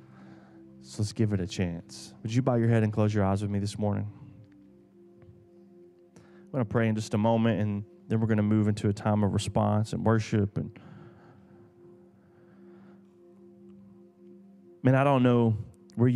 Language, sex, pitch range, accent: English, male, 105-120 Hz, American